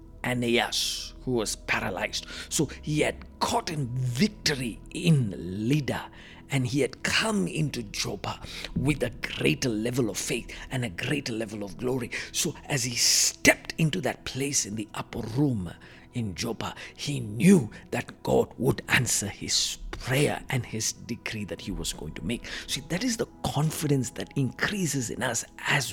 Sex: male